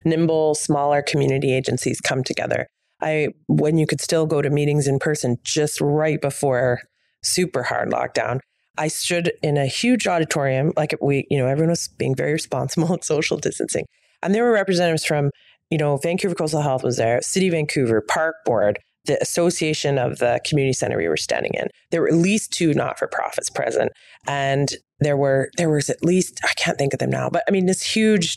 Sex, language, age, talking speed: female, English, 30-49, 195 wpm